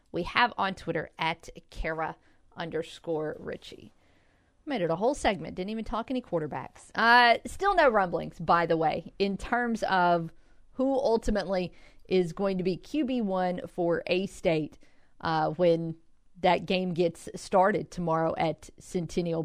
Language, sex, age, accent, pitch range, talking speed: English, female, 40-59, American, 165-230 Hz, 145 wpm